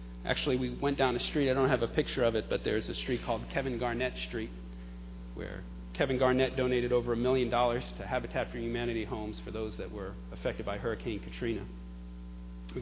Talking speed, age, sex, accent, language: 200 wpm, 40-59, male, American, English